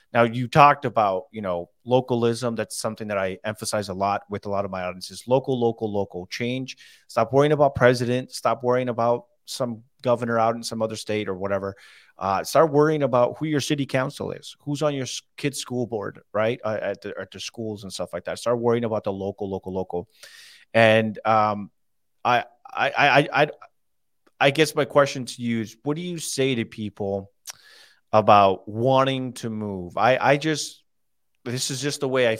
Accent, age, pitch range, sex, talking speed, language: American, 30-49, 110-130 Hz, male, 195 wpm, English